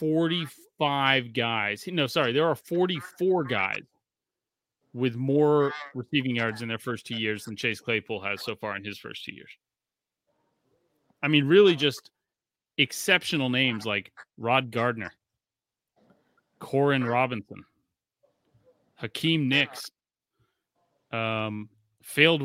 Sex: male